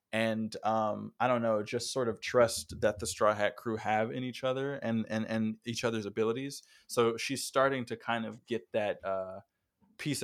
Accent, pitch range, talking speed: American, 110-125 Hz, 200 wpm